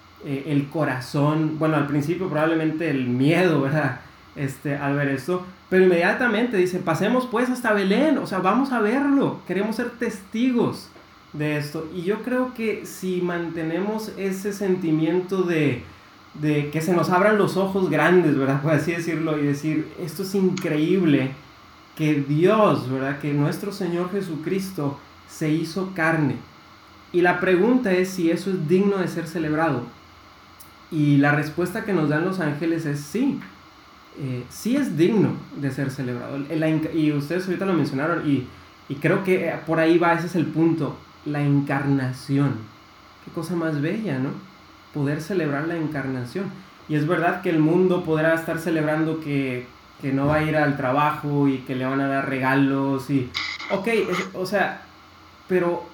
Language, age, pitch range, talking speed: Spanish, 30-49, 140-180 Hz, 165 wpm